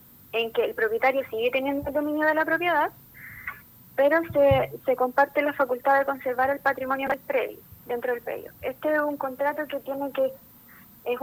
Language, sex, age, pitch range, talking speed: Spanish, female, 20-39, 235-280 Hz, 180 wpm